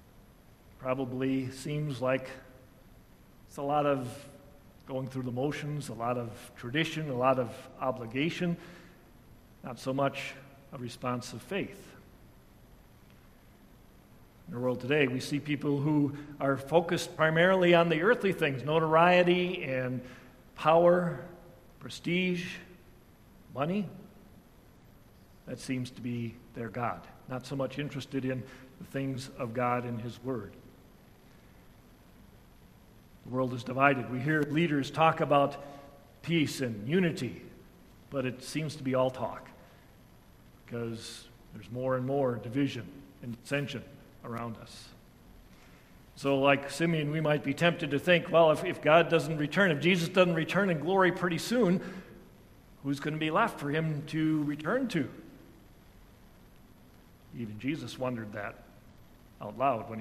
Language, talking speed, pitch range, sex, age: English, 135 wpm, 125-155 Hz, male, 50-69